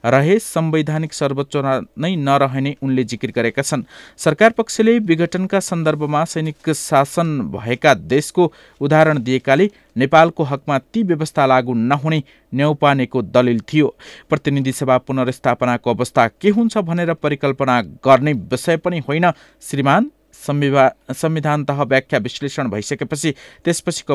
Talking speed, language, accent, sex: 95 wpm, English, Indian, male